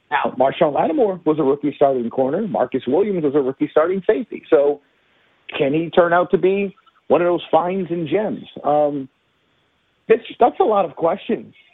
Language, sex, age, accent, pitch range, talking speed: English, male, 50-69, American, 140-185 Hz, 180 wpm